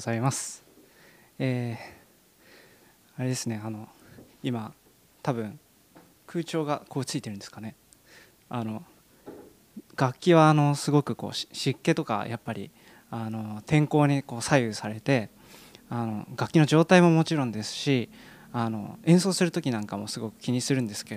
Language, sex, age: Japanese, male, 20-39